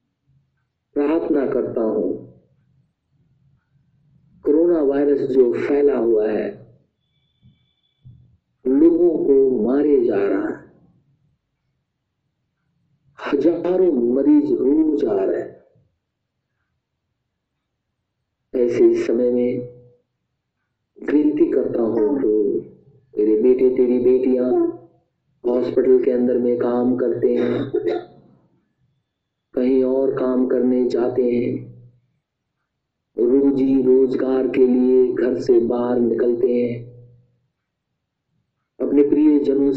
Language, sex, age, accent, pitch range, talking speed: Hindi, male, 50-69, native, 125-150 Hz, 85 wpm